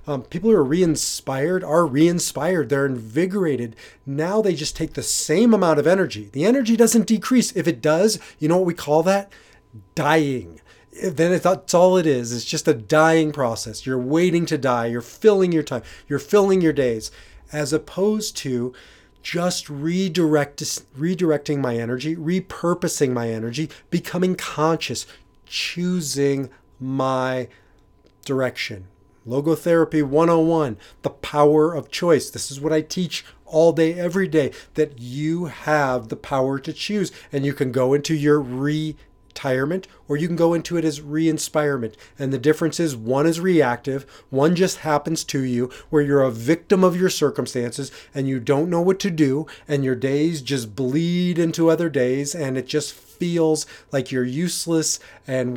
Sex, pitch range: male, 130-170 Hz